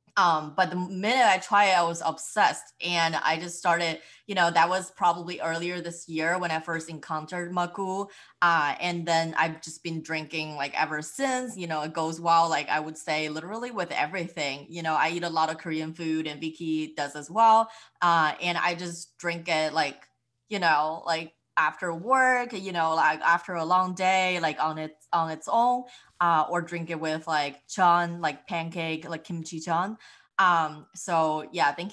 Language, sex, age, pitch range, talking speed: English, female, 20-39, 155-180 Hz, 190 wpm